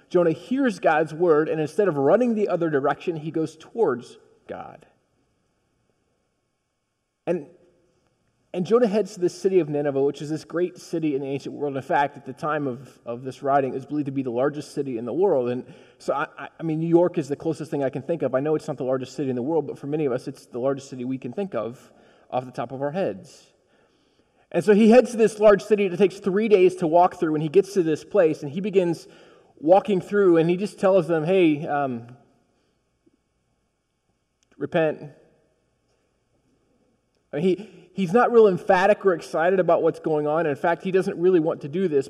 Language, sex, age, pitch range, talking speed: English, male, 20-39, 150-200 Hz, 220 wpm